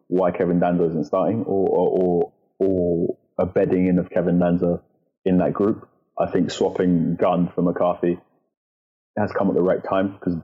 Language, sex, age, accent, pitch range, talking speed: English, male, 20-39, British, 90-100 Hz, 180 wpm